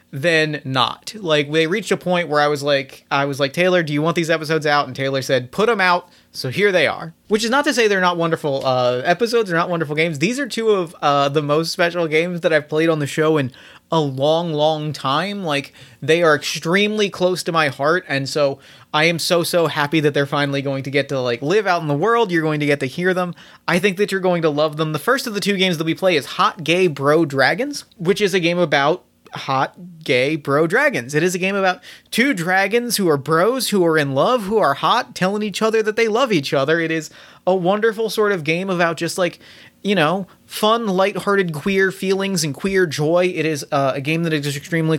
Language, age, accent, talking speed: English, 30-49, American, 245 wpm